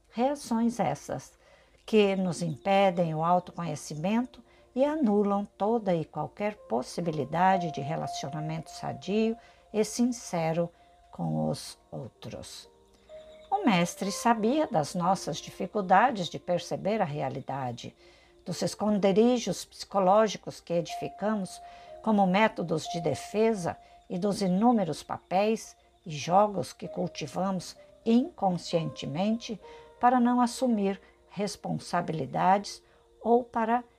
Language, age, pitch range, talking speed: Portuguese, 60-79, 170-235 Hz, 95 wpm